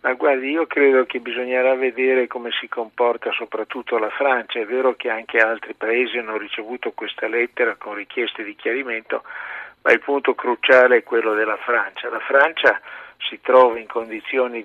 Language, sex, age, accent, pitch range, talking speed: Italian, male, 50-69, native, 115-140 Hz, 170 wpm